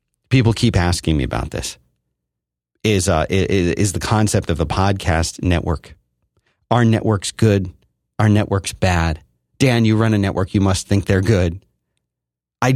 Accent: American